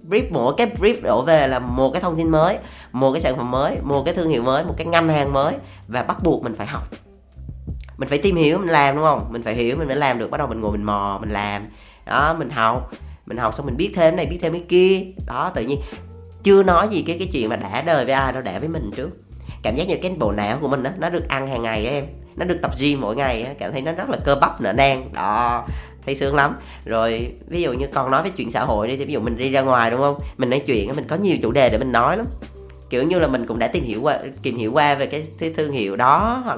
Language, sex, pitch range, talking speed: Vietnamese, female, 105-145 Hz, 285 wpm